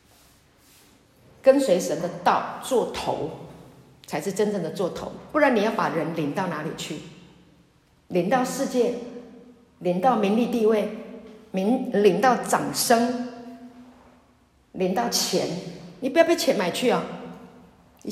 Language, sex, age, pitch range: Chinese, female, 50-69, 170-250 Hz